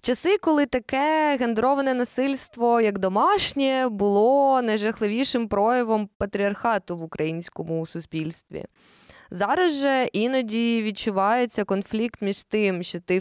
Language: Ukrainian